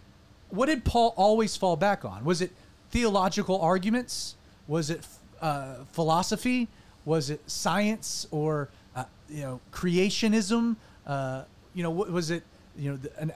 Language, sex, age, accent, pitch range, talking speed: English, male, 30-49, American, 140-205 Hz, 140 wpm